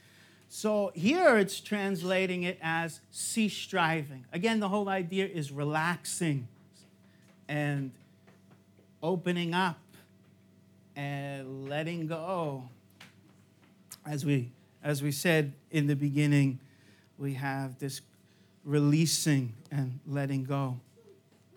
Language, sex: English, male